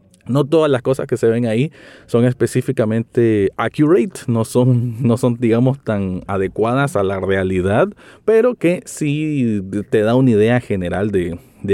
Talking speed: 155 wpm